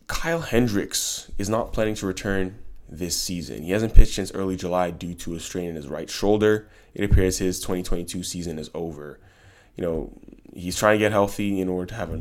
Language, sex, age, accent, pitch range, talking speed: English, male, 20-39, American, 85-100 Hz, 205 wpm